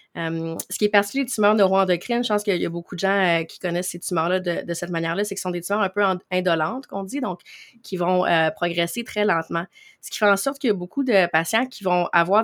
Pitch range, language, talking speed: 170-200 Hz, French, 280 wpm